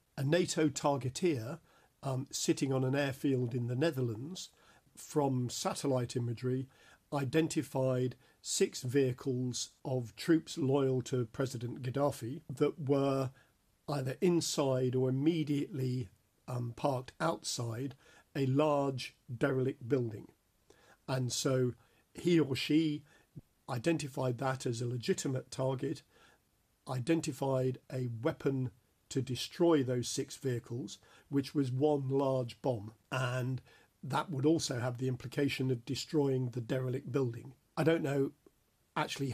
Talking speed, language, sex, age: 115 wpm, English, male, 50-69